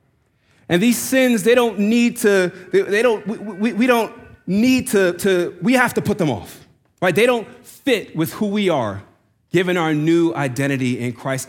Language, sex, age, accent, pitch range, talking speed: English, male, 30-49, American, 135-190 Hz, 195 wpm